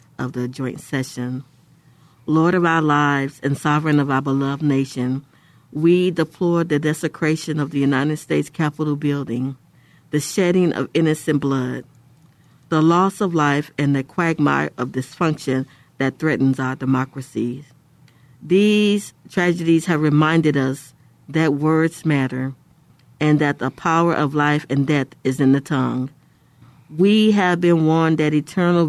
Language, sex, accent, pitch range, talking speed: English, female, American, 135-160 Hz, 140 wpm